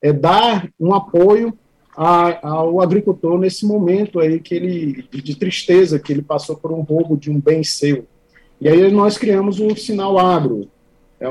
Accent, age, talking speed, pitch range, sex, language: Brazilian, 40-59, 170 wpm, 140-180 Hz, male, Portuguese